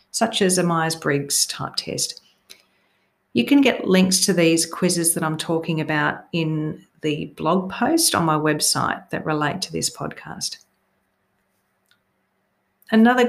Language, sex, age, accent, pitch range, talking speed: English, female, 40-59, Australian, 155-195 Hz, 135 wpm